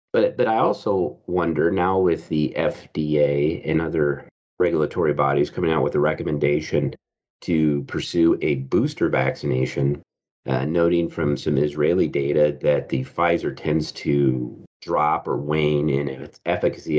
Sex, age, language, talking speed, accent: male, 40-59, English, 140 wpm, American